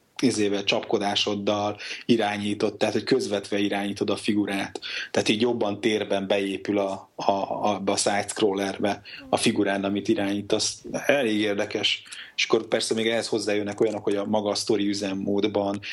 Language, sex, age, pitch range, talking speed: Hungarian, male, 30-49, 100-110 Hz, 145 wpm